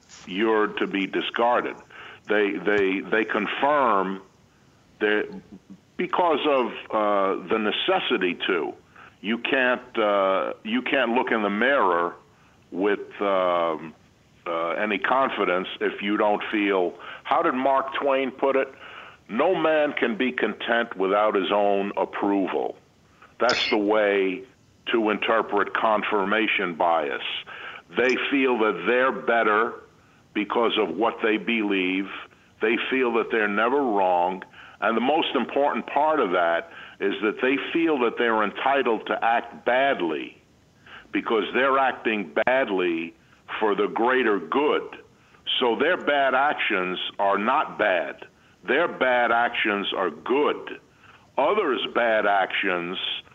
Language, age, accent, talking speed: English, 50-69, American, 125 wpm